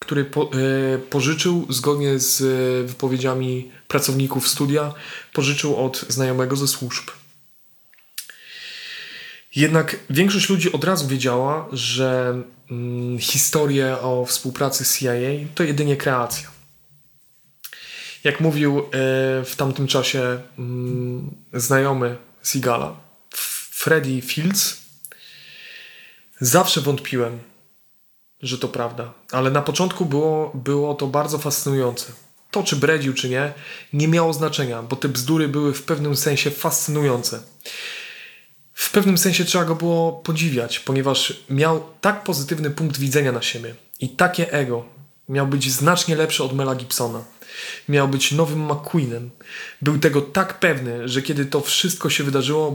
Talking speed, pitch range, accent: 125 wpm, 130-155 Hz, native